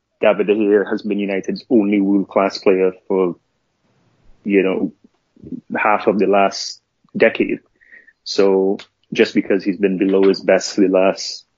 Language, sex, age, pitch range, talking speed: English, male, 20-39, 95-105 Hz, 145 wpm